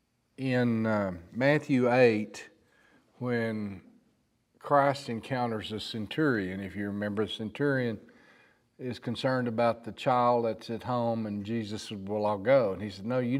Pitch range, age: 105-125 Hz, 50-69